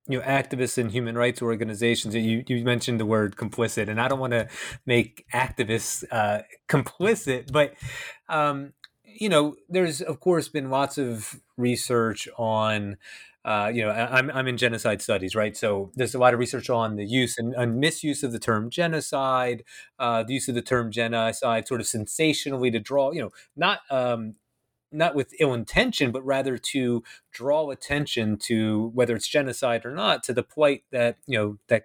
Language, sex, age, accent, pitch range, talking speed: English, male, 30-49, American, 115-145 Hz, 185 wpm